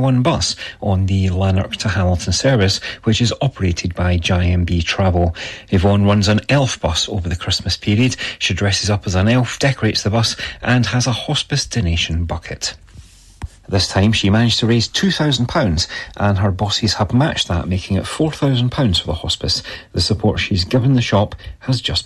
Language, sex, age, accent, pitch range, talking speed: English, male, 40-59, British, 90-115 Hz, 185 wpm